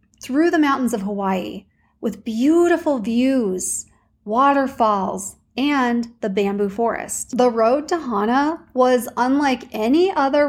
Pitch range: 215-260 Hz